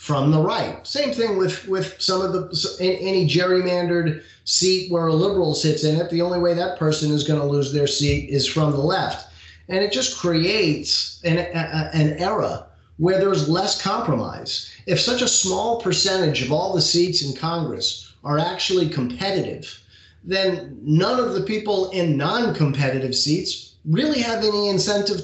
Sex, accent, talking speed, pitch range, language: male, American, 170 wpm, 145-185 Hz, English